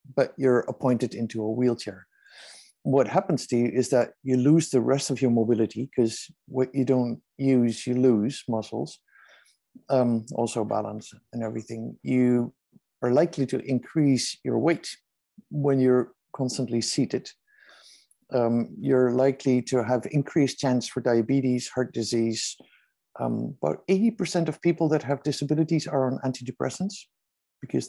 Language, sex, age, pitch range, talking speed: English, male, 60-79, 120-140 Hz, 145 wpm